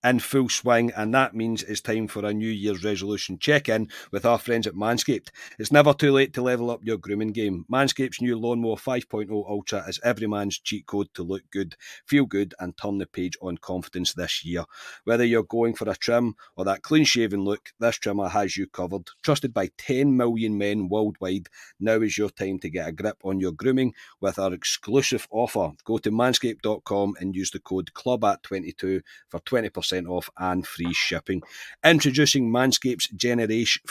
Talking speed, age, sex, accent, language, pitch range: 190 wpm, 40-59, male, British, English, 95-125 Hz